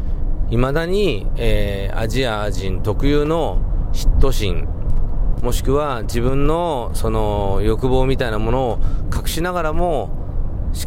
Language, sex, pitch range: Japanese, male, 95-120 Hz